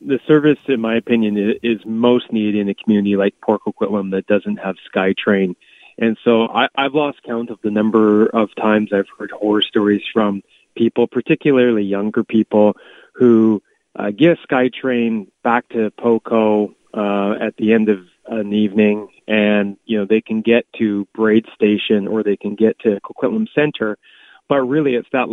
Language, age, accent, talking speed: English, 30-49, American, 175 wpm